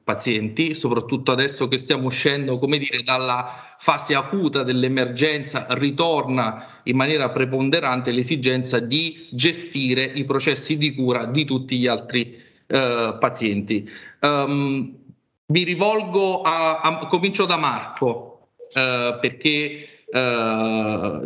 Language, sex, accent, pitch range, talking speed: Italian, male, native, 125-155 Hz, 115 wpm